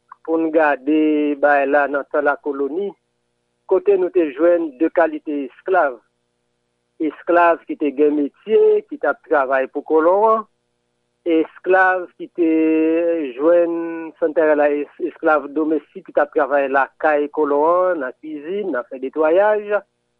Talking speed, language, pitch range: 130 wpm, English, 145-195 Hz